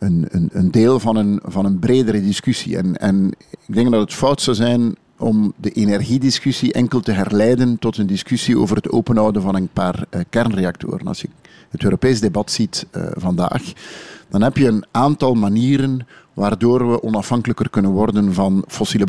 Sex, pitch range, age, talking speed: male, 105-125 Hz, 50-69, 170 wpm